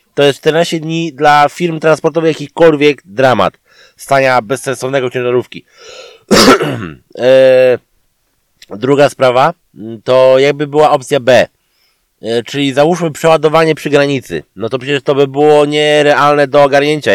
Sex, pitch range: male, 130-155 Hz